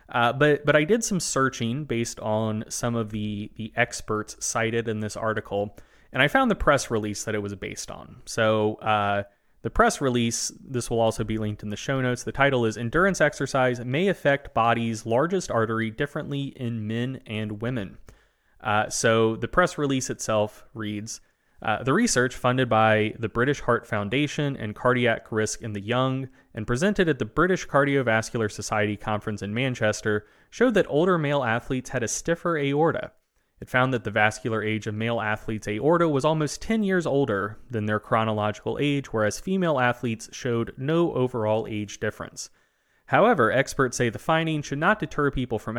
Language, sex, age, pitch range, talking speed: English, male, 20-39, 110-140 Hz, 180 wpm